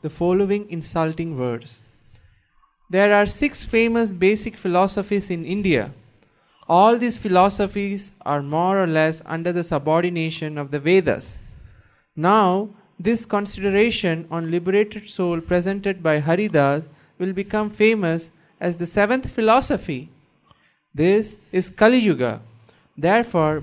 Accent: Indian